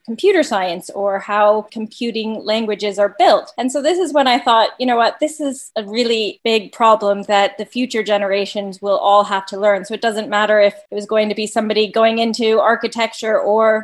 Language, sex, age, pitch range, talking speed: English, female, 20-39, 205-240 Hz, 210 wpm